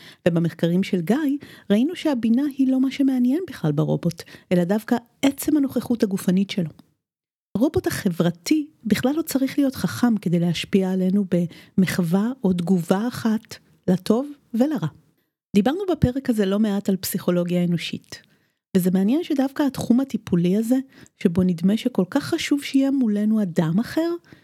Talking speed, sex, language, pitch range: 135 wpm, female, Hebrew, 180-260 Hz